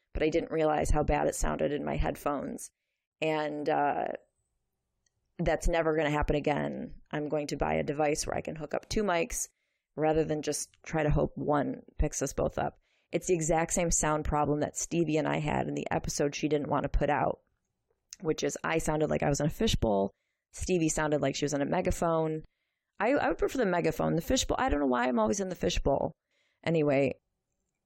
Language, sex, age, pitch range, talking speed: English, female, 20-39, 150-175 Hz, 215 wpm